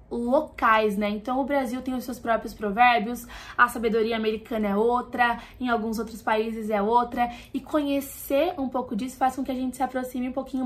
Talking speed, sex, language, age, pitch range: 195 wpm, female, Portuguese, 20-39, 235-280 Hz